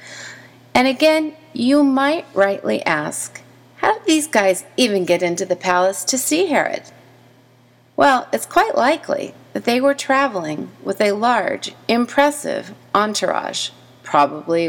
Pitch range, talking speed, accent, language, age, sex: 160-255 Hz, 130 wpm, American, English, 40-59, female